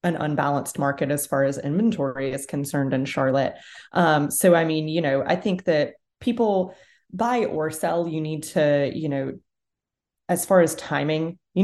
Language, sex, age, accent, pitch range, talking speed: English, female, 20-39, American, 140-175 Hz, 175 wpm